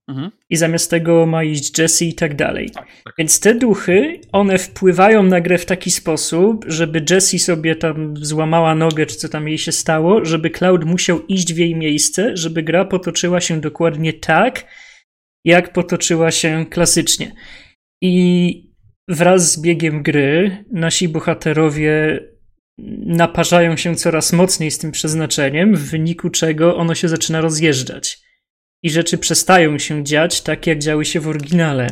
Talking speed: 150 wpm